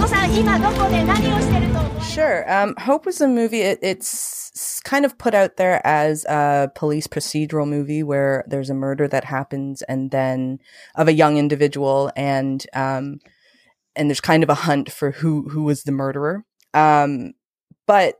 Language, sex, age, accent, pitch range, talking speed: English, female, 20-39, American, 135-160 Hz, 150 wpm